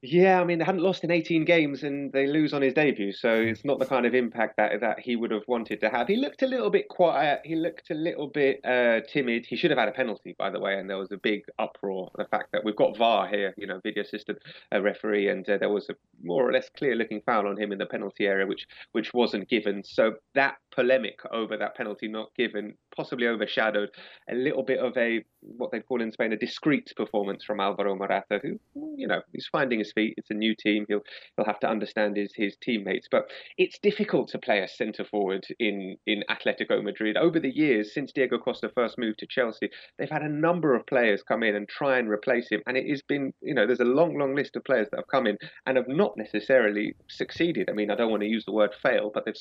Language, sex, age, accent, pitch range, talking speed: English, male, 20-39, British, 105-140 Hz, 250 wpm